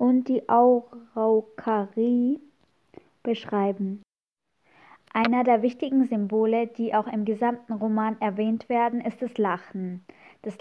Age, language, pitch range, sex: 20-39, German, 225-255 Hz, female